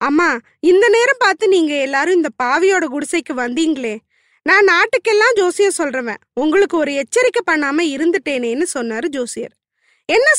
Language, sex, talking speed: Tamil, female, 125 wpm